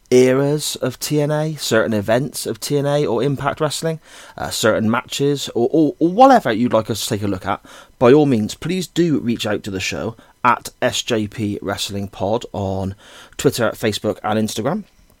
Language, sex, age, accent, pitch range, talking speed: English, male, 30-49, British, 100-130 Hz, 175 wpm